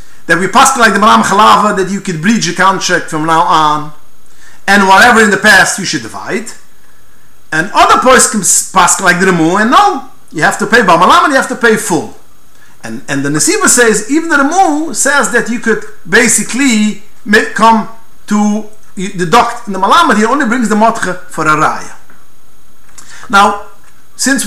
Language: English